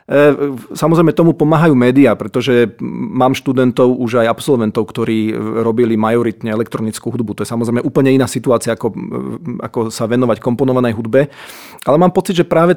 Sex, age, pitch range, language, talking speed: male, 40-59, 120-145 Hz, Slovak, 150 wpm